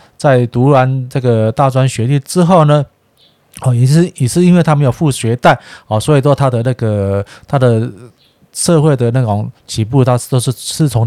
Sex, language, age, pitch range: male, Chinese, 20-39, 110-140 Hz